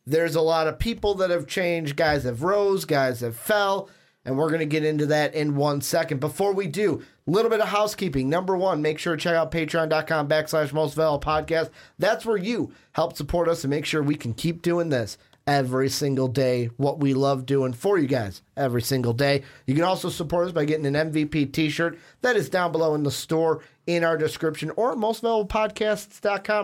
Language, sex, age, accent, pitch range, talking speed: English, male, 30-49, American, 140-190 Hz, 205 wpm